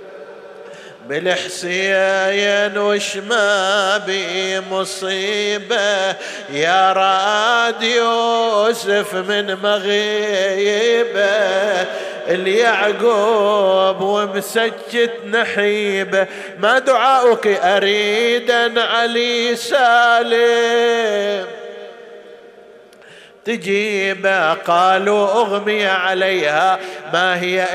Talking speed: 50 wpm